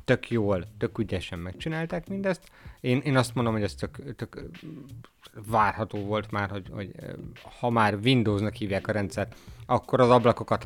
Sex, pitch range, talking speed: male, 100-125 Hz, 160 wpm